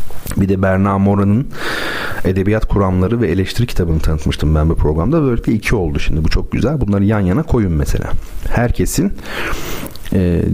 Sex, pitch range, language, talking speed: male, 80-100 Hz, Turkish, 155 wpm